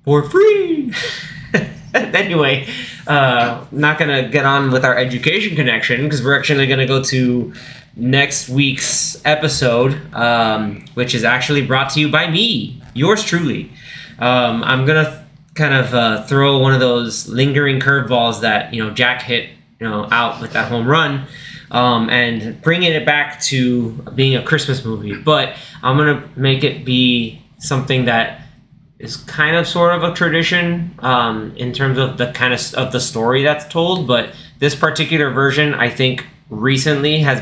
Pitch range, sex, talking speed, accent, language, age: 120-150 Hz, male, 165 wpm, American, English, 20-39